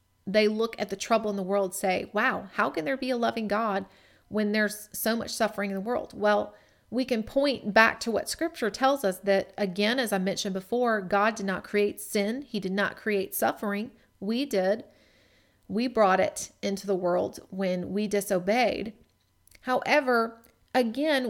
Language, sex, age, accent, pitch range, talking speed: English, female, 30-49, American, 195-235 Hz, 185 wpm